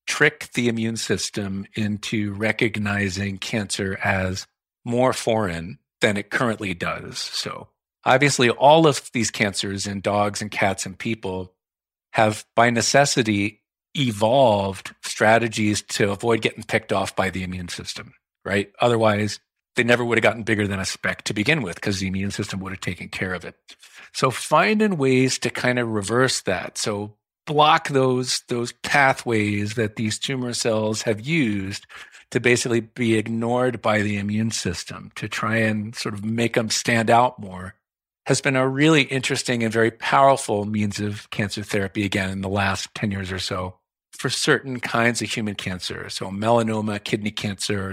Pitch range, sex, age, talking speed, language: 100-120 Hz, male, 50-69, 165 wpm, English